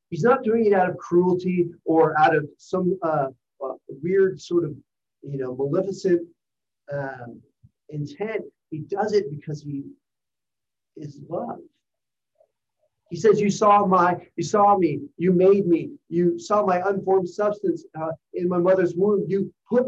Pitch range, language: 140-190 Hz, English